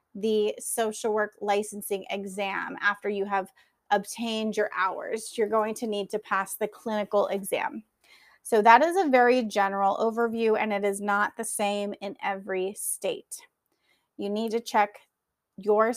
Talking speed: 155 wpm